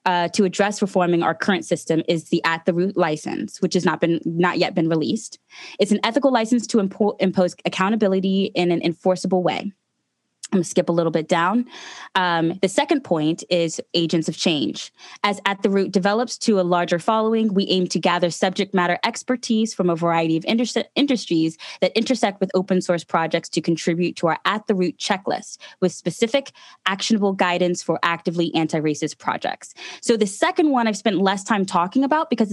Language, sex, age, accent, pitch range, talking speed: English, female, 20-39, American, 170-205 Hz, 190 wpm